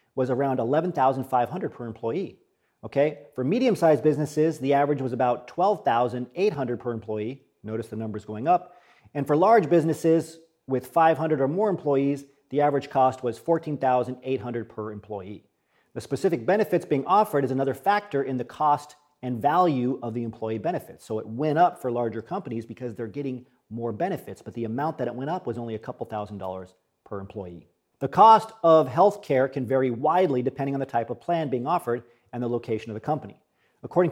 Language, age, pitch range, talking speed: English, 40-59, 120-155 Hz, 185 wpm